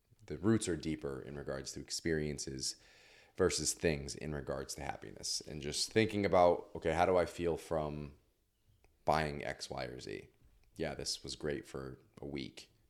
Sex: male